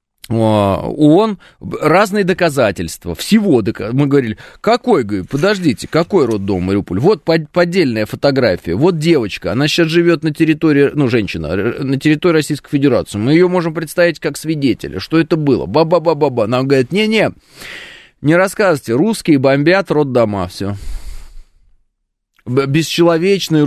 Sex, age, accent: male, 20-39, native